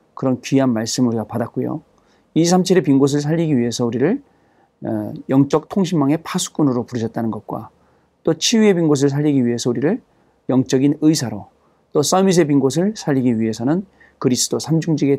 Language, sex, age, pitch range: Korean, male, 40-59, 125-165 Hz